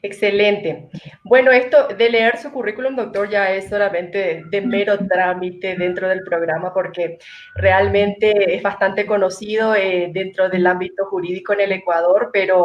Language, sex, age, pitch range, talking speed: Spanish, female, 20-39, 185-220 Hz, 150 wpm